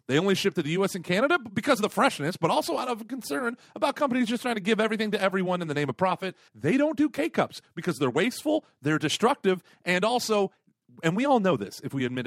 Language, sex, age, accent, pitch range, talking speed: English, male, 40-59, American, 150-240 Hz, 245 wpm